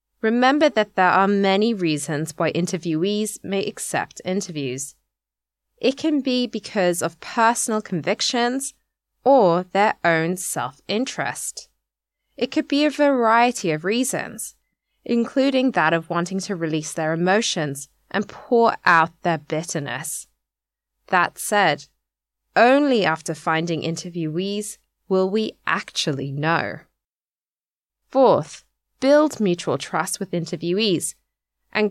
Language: English